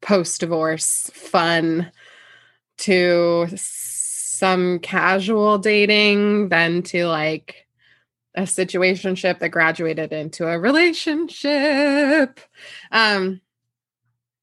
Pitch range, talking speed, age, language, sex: 160-210 Hz, 75 wpm, 20-39, English, female